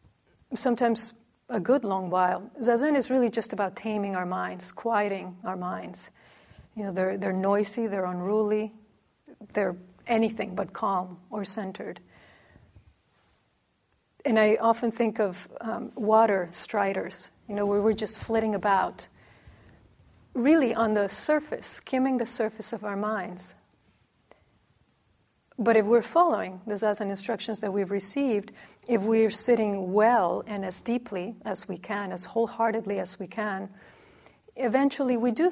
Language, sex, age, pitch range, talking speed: English, female, 40-59, 200-230 Hz, 140 wpm